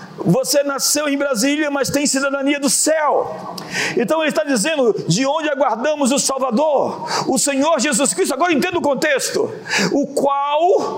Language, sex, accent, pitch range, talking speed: Portuguese, male, Brazilian, 260-300 Hz, 155 wpm